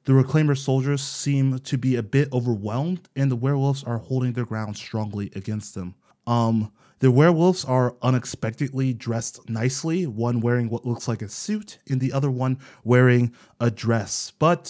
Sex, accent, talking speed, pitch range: male, American, 165 wpm, 120-155 Hz